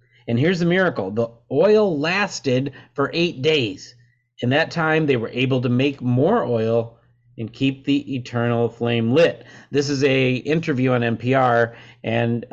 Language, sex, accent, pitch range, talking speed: English, male, American, 115-140 Hz, 160 wpm